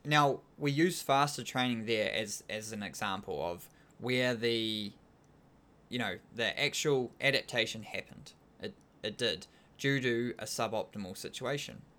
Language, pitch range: English, 110-135 Hz